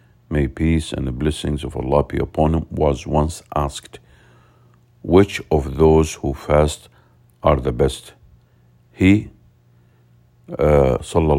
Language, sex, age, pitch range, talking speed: English, male, 50-69, 70-90 Hz, 120 wpm